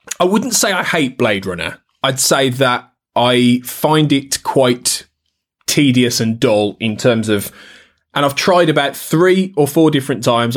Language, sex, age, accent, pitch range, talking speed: English, male, 20-39, British, 120-155 Hz, 165 wpm